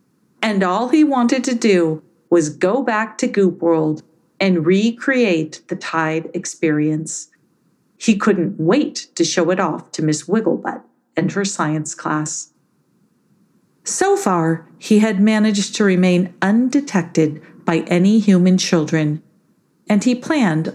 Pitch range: 165-220 Hz